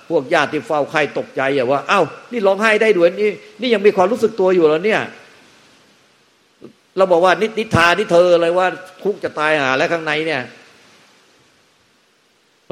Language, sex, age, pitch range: Thai, male, 60-79, 105-130 Hz